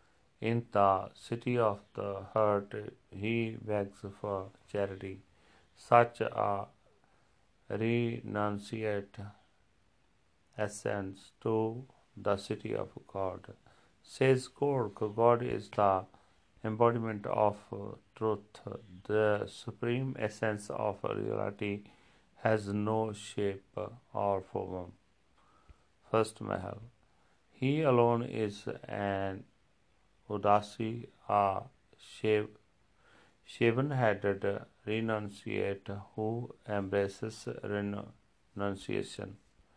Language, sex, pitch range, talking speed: Punjabi, male, 100-115 Hz, 80 wpm